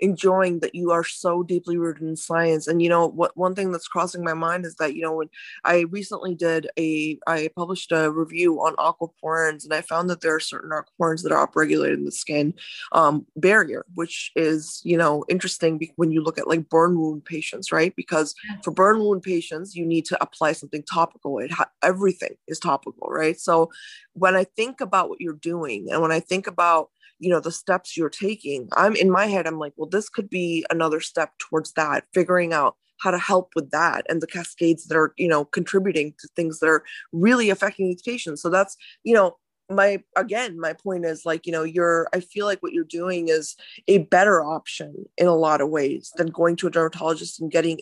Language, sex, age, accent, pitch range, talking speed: English, female, 20-39, American, 160-190 Hz, 215 wpm